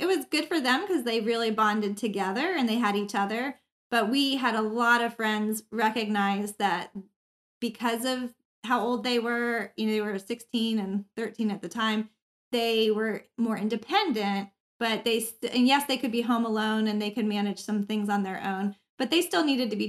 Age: 20-39